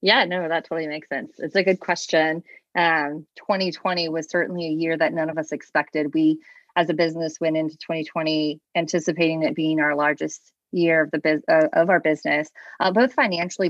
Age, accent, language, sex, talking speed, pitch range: 20-39, American, English, female, 195 wpm, 160-185 Hz